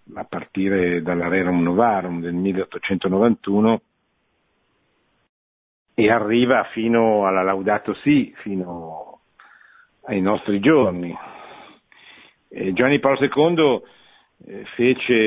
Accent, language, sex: native, Italian, male